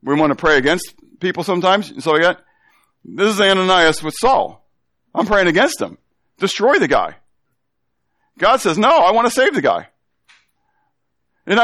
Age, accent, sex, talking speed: 50-69, American, male, 160 wpm